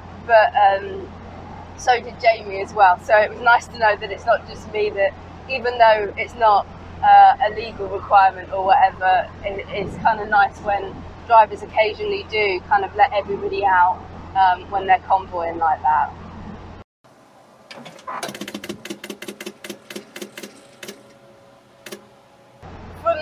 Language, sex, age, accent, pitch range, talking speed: English, female, 20-39, British, 195-255 Hz, 125 wpm